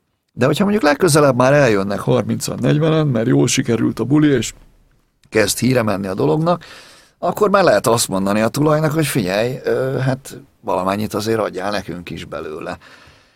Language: Hungarian